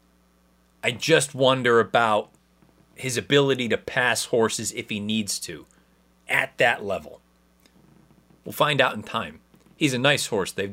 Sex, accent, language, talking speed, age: male, American, English, 145 wpm, 30-49